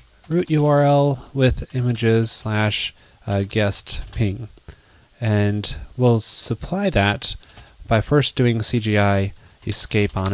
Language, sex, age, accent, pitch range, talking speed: English, male, 20-39, American, 105-145 Hz, 105 wpm